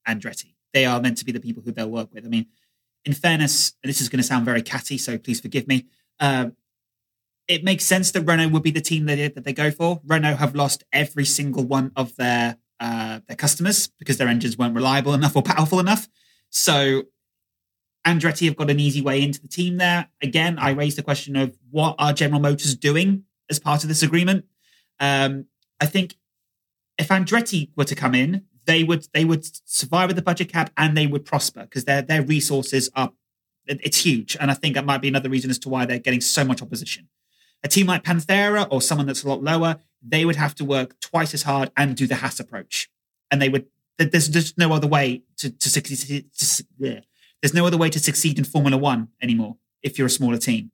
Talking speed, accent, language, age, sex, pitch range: 220 wpm, British, English, 20-39, male, 130-160 Hz